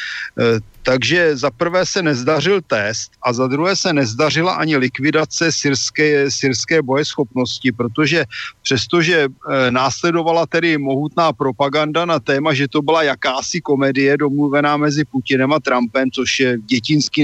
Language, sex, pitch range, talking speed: Slovak, male, 130-150 Hz, 130 wpm